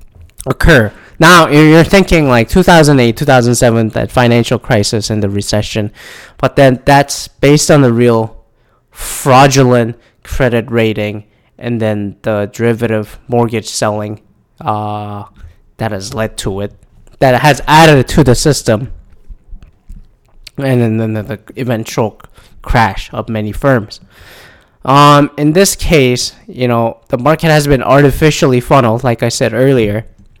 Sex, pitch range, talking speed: male, 110-140 Hz, 130 wpm